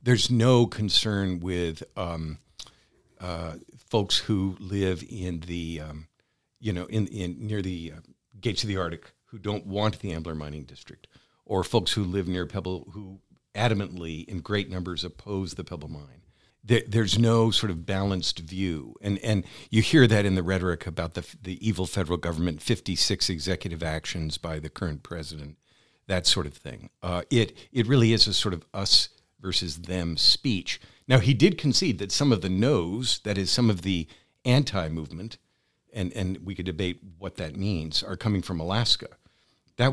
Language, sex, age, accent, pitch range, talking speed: English, male, 50-69, American, 85-110 Hz, 175 wpm